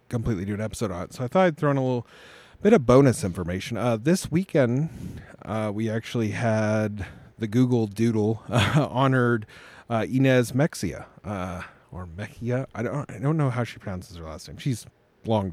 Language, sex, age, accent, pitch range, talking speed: English, male, 30-49, American, 105-135 Hz, 190 wpm